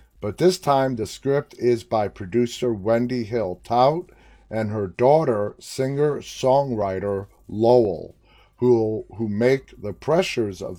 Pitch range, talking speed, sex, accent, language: 105-125 Hz, 120 wpm, male, American, English